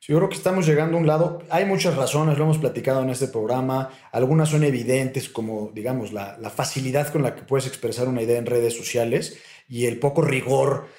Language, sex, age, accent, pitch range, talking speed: Spanish, male, 40-59, Mexican, 115-150 Hz, 215 wpm